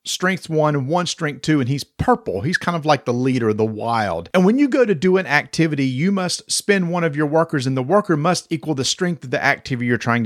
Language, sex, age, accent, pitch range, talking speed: English, male, 40-59, American, 135-185 Hz, 255 wpm